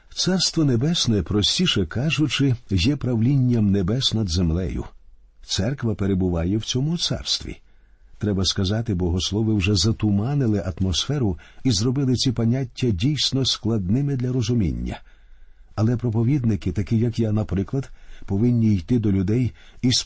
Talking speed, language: 115 wpm, Ukrainian